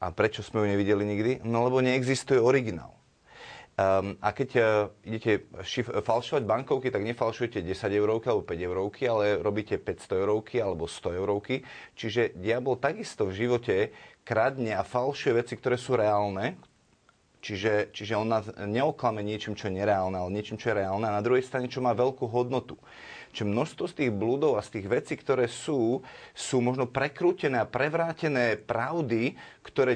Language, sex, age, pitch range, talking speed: Slovak, male, 30-49, 105-130 Hz, 160 wpm